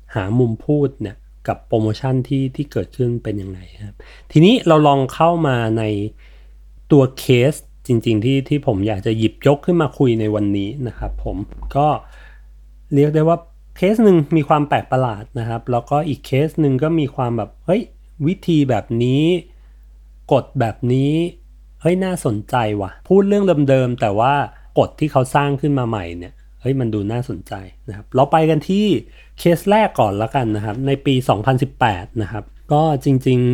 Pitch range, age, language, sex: 110-150 Hz, 30-49, Thai, male